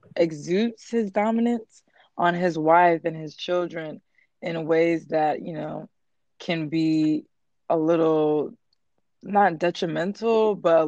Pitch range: 155-180 Hz